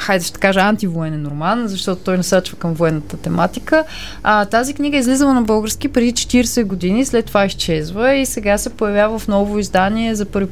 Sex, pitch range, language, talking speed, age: female, 175-235 Hz, Bulgarian, 185 wpm, 20-39